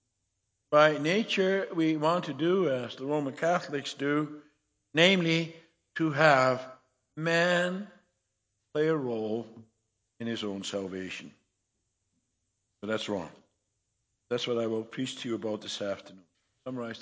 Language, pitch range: English, 110-160 Hz